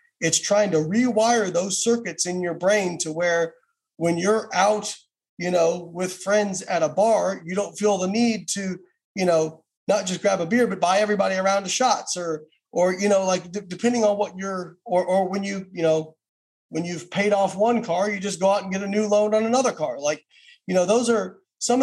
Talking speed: 220 wpm